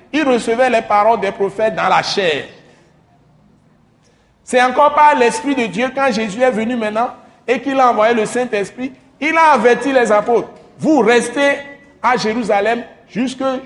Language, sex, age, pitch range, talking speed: French, male, 60-79, 155-230 Hz, 165 wpm